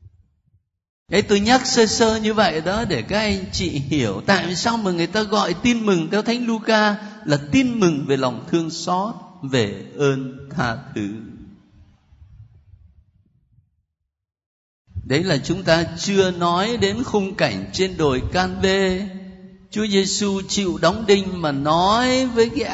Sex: male